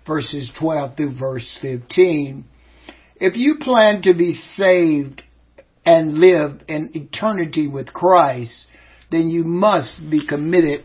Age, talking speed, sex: 60-79, 120 wpm, male